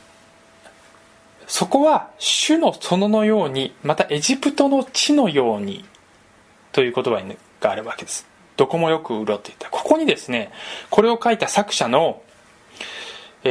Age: 20-39